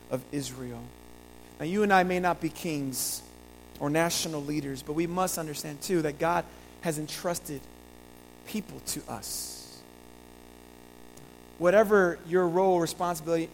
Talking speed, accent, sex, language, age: 135 wpm, American, male, English, 40-59